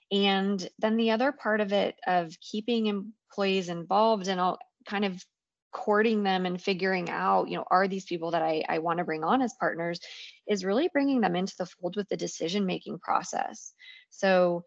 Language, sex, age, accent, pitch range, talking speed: English, female, 20-39, American, 175-215 Hz, 190 wpm